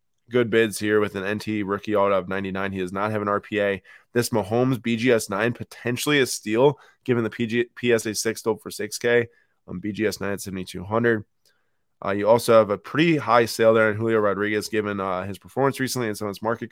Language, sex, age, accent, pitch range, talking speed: English, male, 20-39, American, 105-125 Hz, 200 wpm